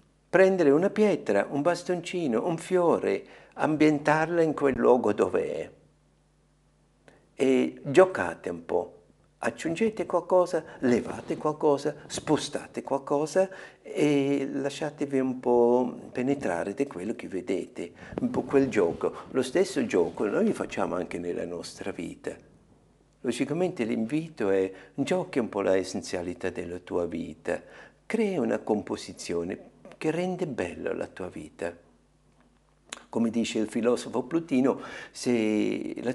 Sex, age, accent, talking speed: male, 60-79, native, 120 wpm